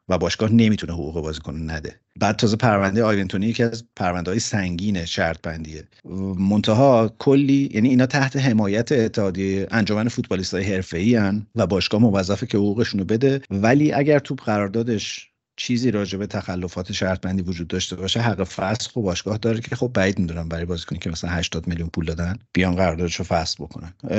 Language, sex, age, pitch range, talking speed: Persian, male, 50-69, 90-115 Hz, 165 wpm